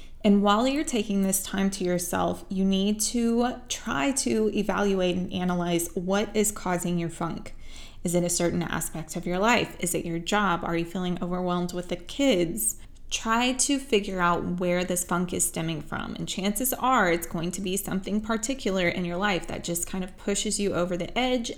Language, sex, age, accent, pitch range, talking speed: English, female, 20-39, American, 175-205 Hz, 195 wpm